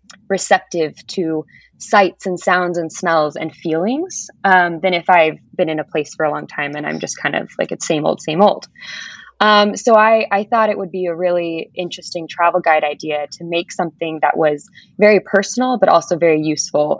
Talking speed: 200 wpm